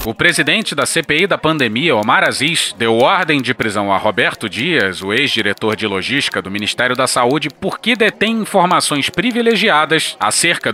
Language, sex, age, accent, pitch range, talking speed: Portuguese, male, 30-49, Brazilian, 125-190 Hz, 155 wpm